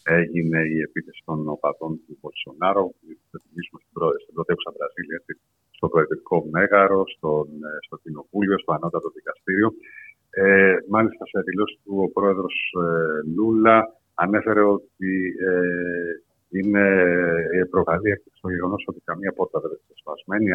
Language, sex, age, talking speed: Greek, male, 50-69, 130 wpm